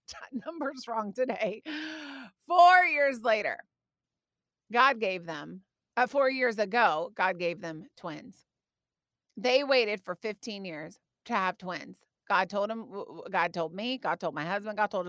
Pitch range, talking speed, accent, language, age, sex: 200-275 Hz, 145 wpm, American, English, 30-49, female